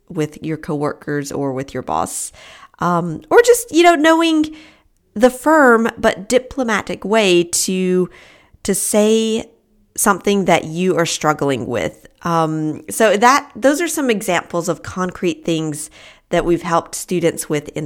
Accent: American